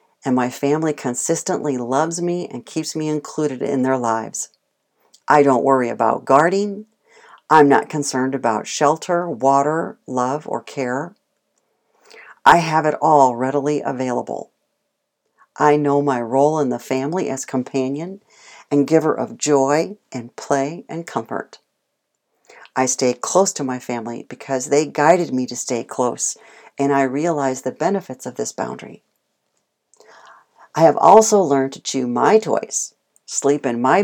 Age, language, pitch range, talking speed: 50-69, English, 135-180 Hz, 145 wpm